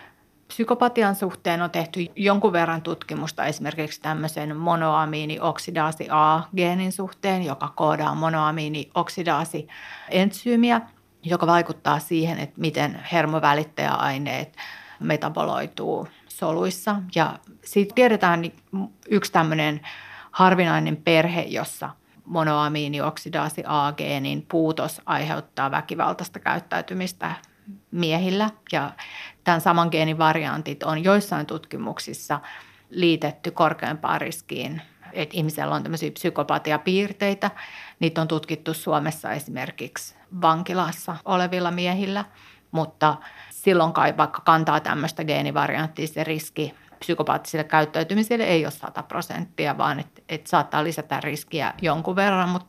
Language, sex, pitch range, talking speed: Finnish, female, 155-185 Hz, 95 wpm